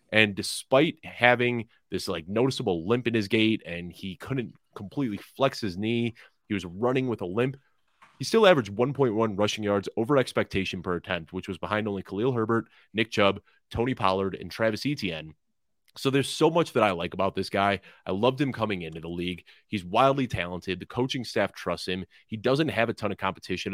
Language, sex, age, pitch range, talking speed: English, male, 30-49, 95-120 Hz, 195 wpm